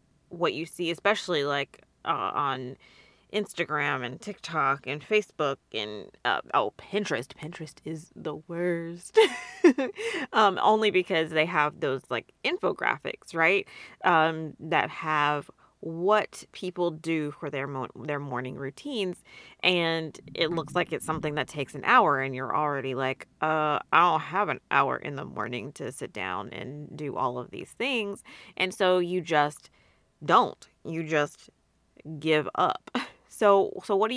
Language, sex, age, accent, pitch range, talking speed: English, female, 30-49, American, 150-190 Hz, 150 wpm